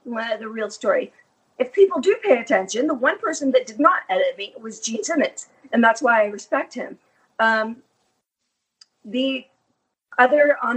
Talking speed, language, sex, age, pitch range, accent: 160 wpm, English, female, 50-69, 225-290 Hz, American